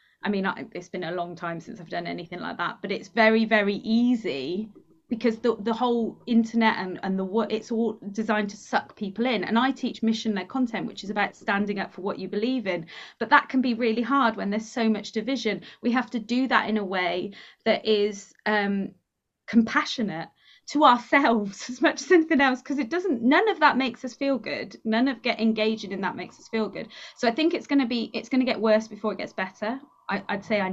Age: 20-39